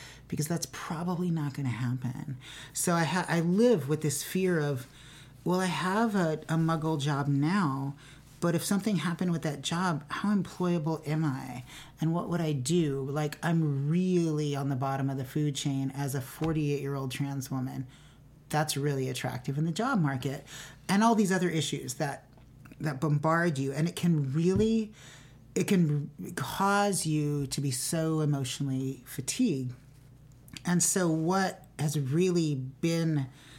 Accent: American